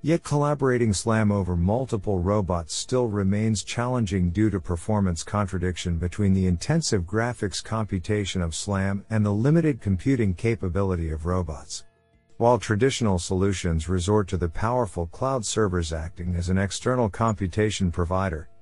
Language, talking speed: English, 135 wpm